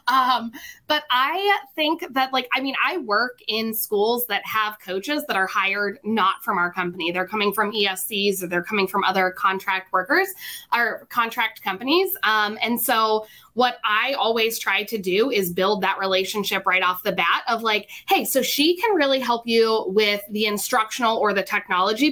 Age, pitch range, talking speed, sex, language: 20-39, 200-260 Hz, 185 wpm, female, English